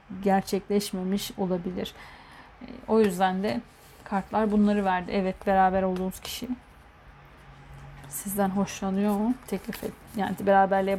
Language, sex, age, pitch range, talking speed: Turkish, female, 40-59, 190-220 Hz, 95 wpm